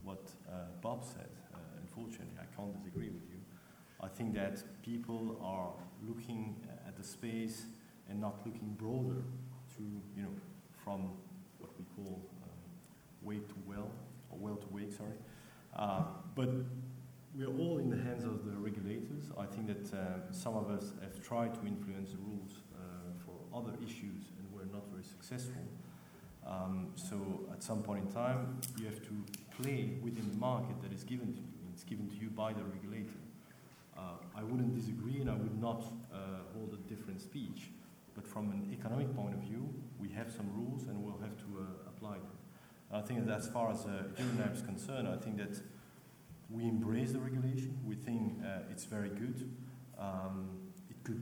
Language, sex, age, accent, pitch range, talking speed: English, male, 30-49, French, 100-125 Hz, 185 wpm